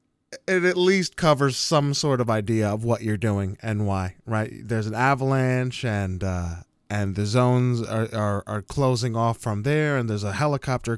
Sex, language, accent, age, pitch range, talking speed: male, English, American, 20-39, 100-125 Hz, 185 wpm